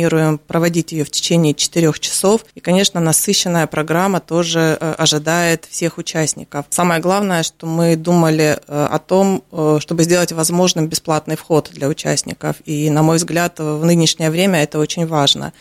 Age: 30-49